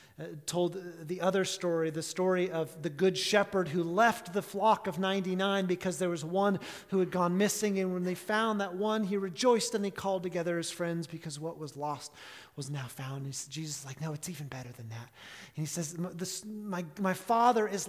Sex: male